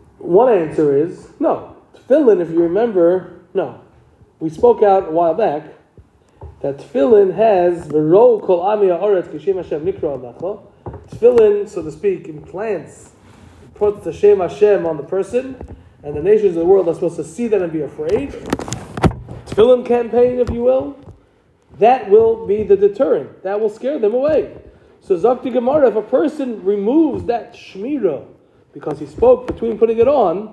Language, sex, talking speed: English, male, 160 wpm